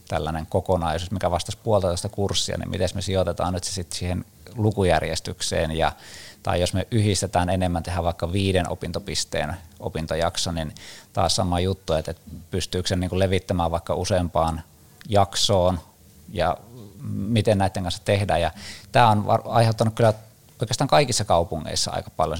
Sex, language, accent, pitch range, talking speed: male, Finnish, native, 85-105 Hz, 145 wpm